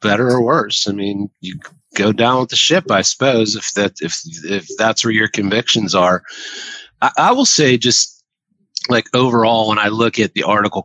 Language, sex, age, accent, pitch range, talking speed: English, male, 40-59, American, 100-135 Hz, 195 wpm